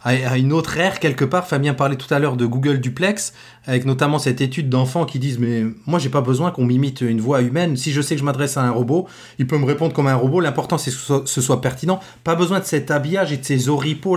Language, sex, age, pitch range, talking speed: French, male, 30-49, 130-165 Hz, 265 wpm